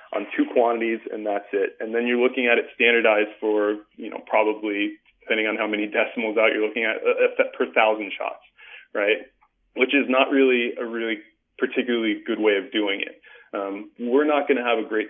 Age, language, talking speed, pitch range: 20-39, English, 205 wpm, 105-130 Hz